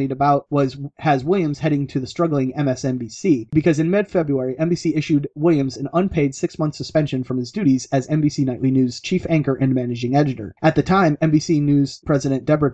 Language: English